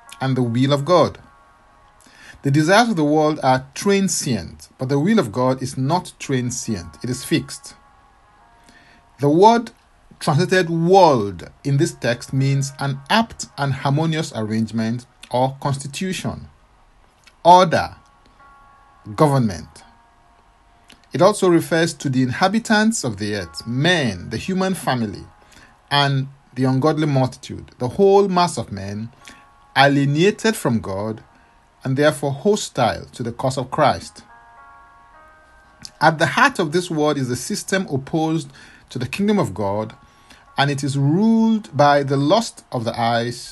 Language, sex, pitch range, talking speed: English, male, 115-170 Hz, 135 wpm